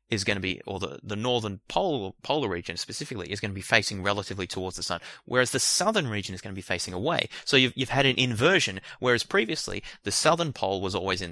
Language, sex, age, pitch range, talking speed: English, male, 20-39, 95-125 Hz, 240 wpm